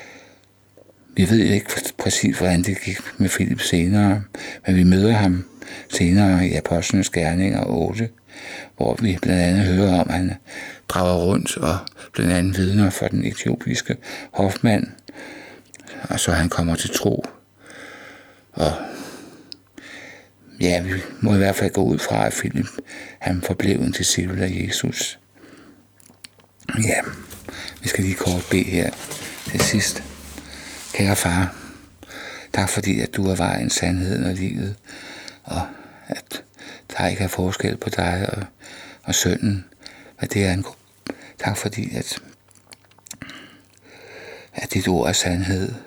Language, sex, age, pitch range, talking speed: Danish, male, 60-79, 90-100 Hz, 135 wpm